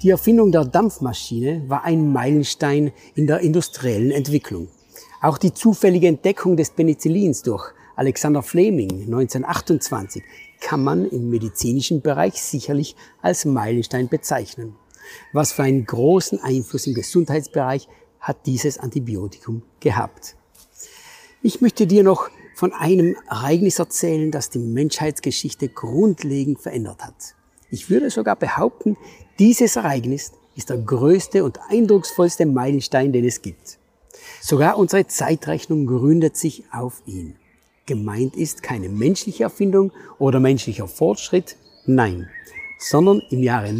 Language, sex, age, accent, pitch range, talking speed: German, male, 60-79, German, 125-175 Hz, 120 wpm